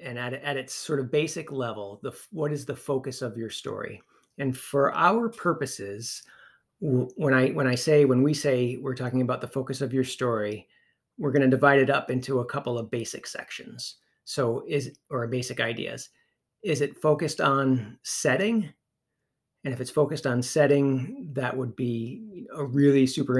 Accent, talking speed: American, 180 wpm